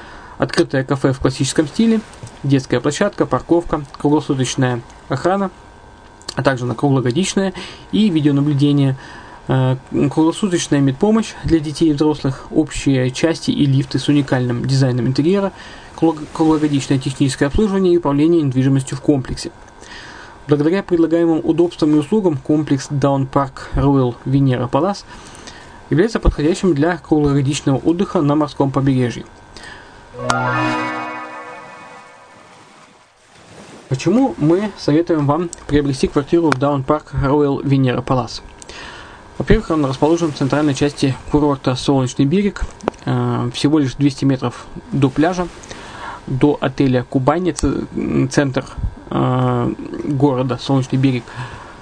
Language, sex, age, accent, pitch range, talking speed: Russian, male, 20-39, native, 135-160 Hz, 105 wpm